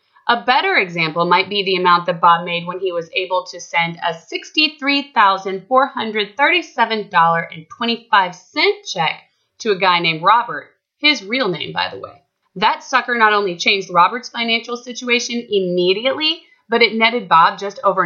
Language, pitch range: English, 185-280 Hz